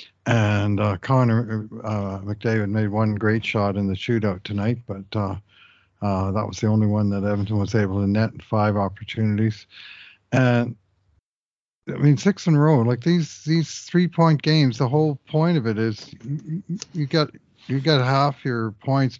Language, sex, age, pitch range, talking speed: English, male, 50-69, 105-135 Hz, 170 wpm